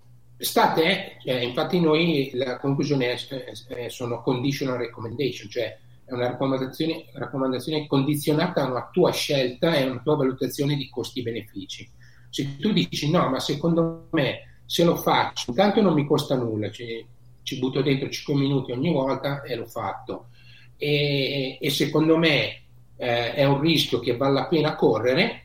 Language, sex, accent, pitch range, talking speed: Italian, male, native, 125-160 Hz, 160 wpm